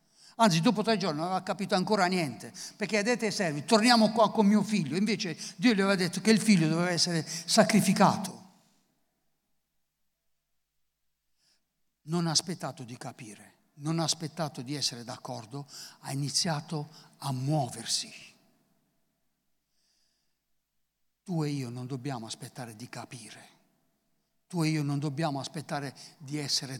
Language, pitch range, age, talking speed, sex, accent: English, 140-215 Hz, 60-79, 135 wpm, male, Italian